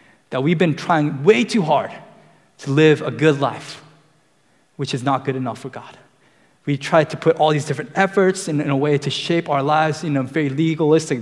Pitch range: 125-155 Hz